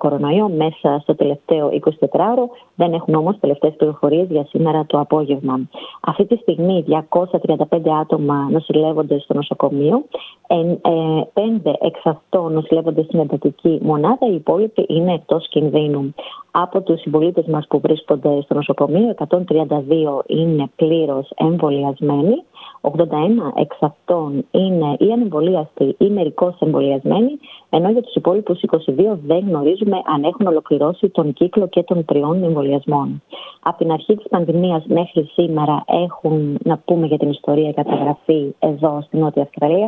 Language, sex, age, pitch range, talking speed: Greek, female, 30-49, 150-180 Hz, 130 wpm